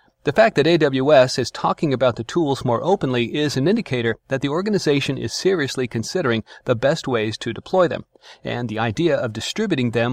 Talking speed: 190 wpm